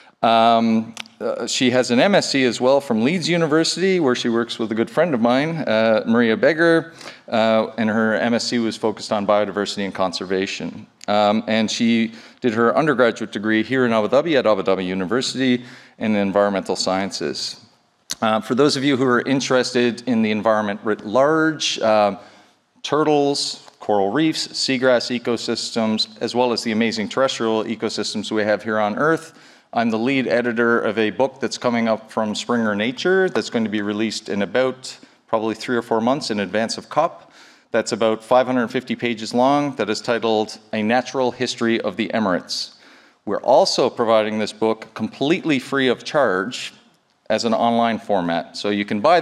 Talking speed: 175 wpm